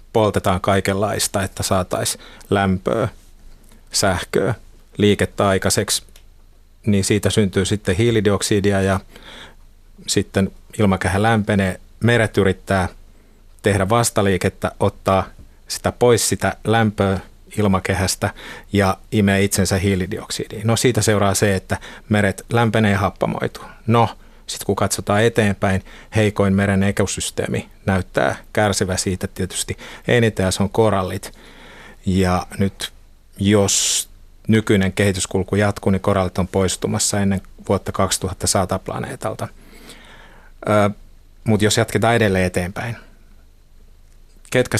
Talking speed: 100 wpm